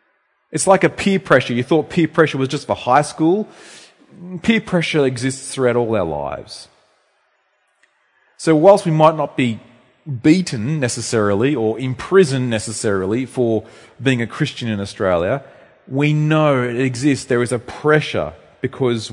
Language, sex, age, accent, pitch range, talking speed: English, male, 30-49, Australian, 115-165 Hz, 145 wpm